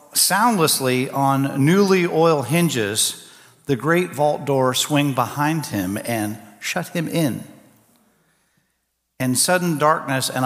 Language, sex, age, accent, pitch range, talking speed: English, male, 50-69, American, 120-160 Hz, 115 wpm